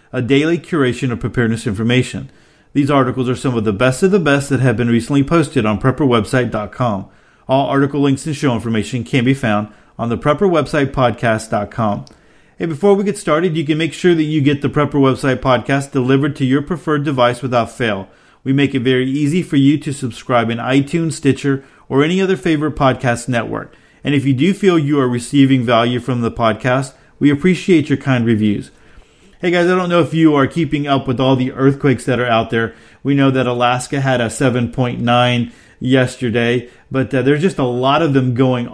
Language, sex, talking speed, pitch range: English, male, 200 wpm, 125-145 Hz